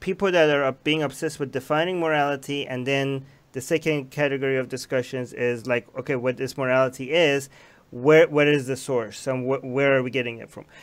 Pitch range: 135-155 Hz